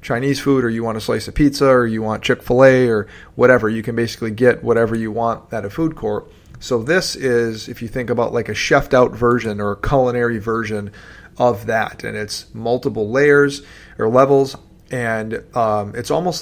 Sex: male